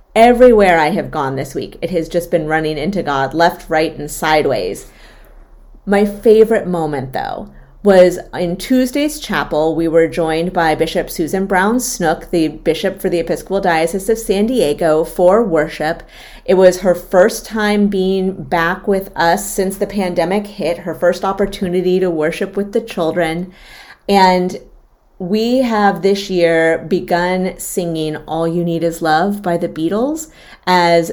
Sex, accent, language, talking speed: female, American, English, 155 wpm